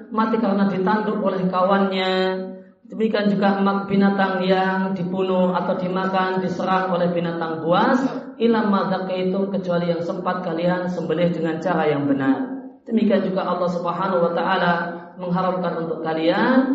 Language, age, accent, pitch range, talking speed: Indonesian, 40-59, native, 180-225 Hz, 135 wpm